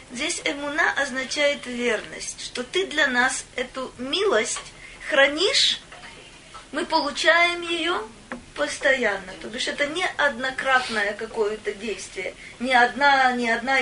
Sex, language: female, Russian